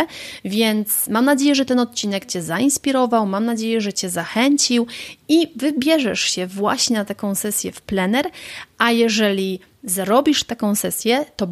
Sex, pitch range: female, 190-235 Hz